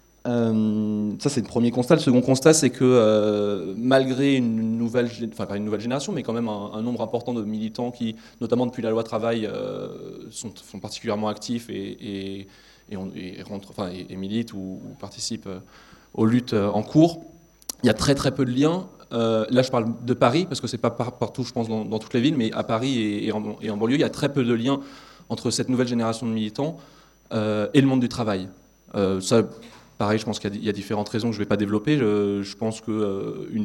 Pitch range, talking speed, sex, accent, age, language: 105-120 Hz, 235 wpm, male, French, 20-39, French